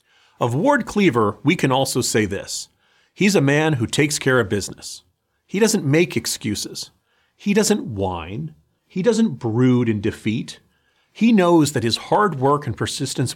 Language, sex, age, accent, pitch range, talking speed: English, male, 40-59, American, 115-175 Hz, 160 wpm